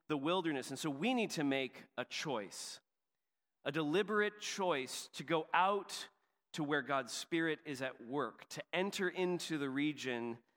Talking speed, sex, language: 155 wpm, male, English